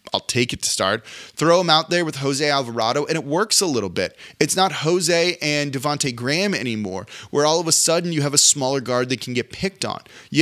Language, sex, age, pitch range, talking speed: English, male, 30-49, 125-165 Hz, 235 wpm